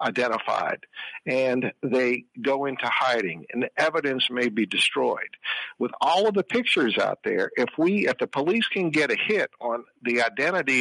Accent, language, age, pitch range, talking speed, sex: American, English, 50-69, 130-170 Hz, 170 wpm, male